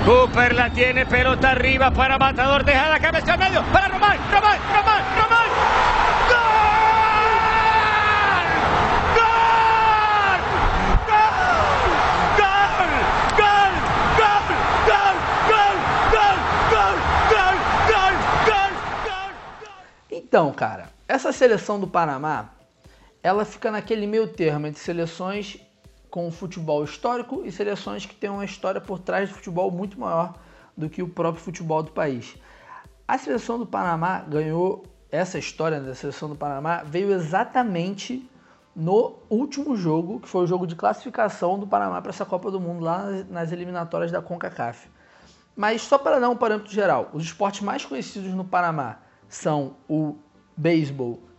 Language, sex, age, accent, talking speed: Portuguese, male, 30-49, Brazilian, 120 wpm